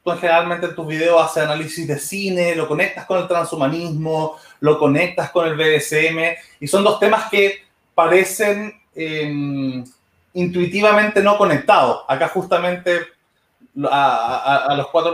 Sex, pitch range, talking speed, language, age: male, 145-185 Hz, 145 wpm, Spanish, 20-39